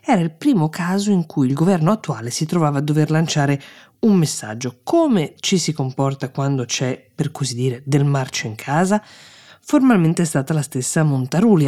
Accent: native